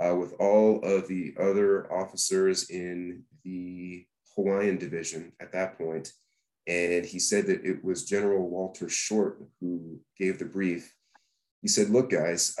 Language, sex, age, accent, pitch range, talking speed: English, male, 30-49, American, 90-100 Hz, 150 wpm